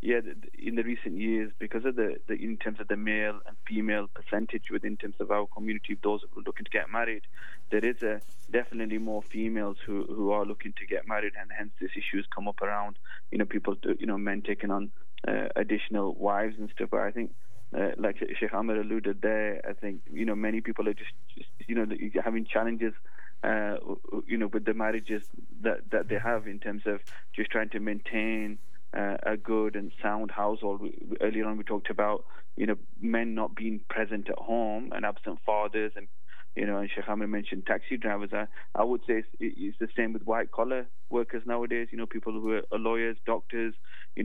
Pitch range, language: 105-115 Hz, English